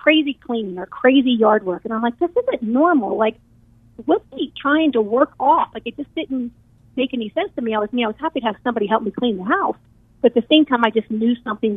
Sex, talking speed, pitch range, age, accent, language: female, 255 wpm, 205-245 Hz, 40-59, American, English